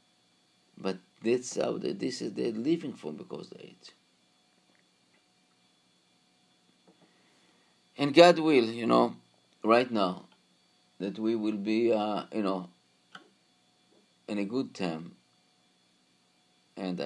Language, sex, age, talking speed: English, male, 50-69, 105 wpm